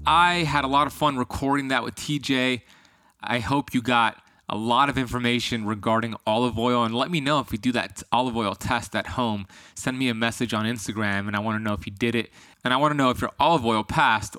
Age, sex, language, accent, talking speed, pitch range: 20-39, male, English, American, 245 wpm, 110-140 Hz